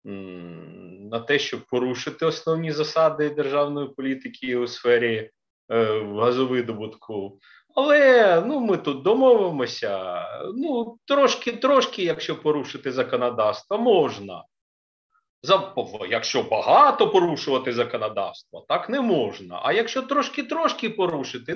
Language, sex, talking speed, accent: Ukrainian, male, 95 wpm, native